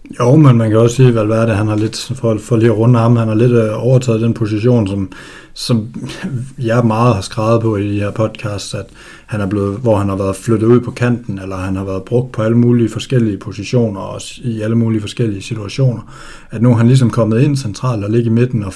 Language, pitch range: Danish, 105-120 Hz